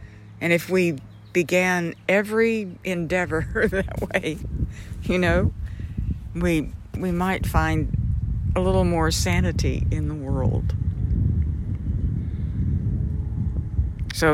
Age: 60-79